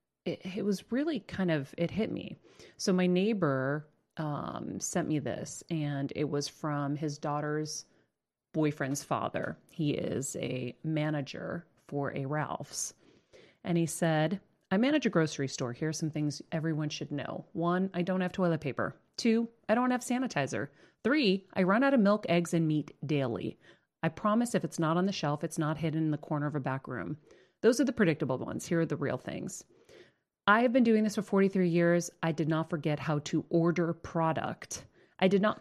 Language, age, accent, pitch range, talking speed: English, 30-49, American, 150-195 Hz, 190 wpm